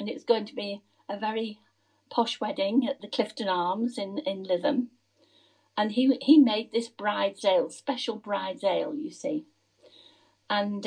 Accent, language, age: British, English, 50-69